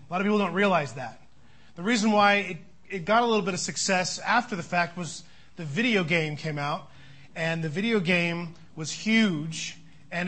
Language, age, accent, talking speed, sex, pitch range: English, 30-49, American, 200 wpm, male, 160-195 Hz